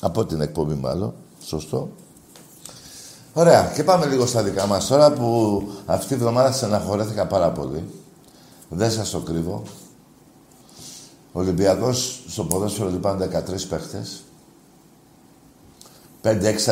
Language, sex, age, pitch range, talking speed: Greek, male, 60-79, 95-130 Hz, 115 wpm